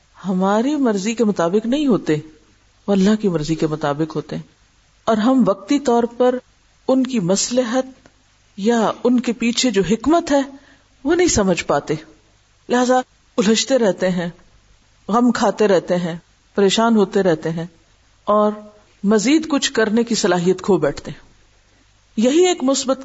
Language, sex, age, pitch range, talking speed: Urdu, female, 50-69, 170-230 Hz, 145 wpm